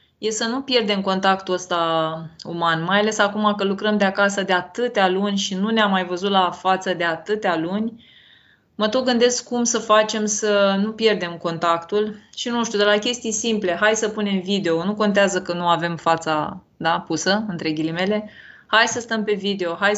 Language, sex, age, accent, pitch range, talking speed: Romanian, female, 20-39, native, 180-215 Hz, 190 wpm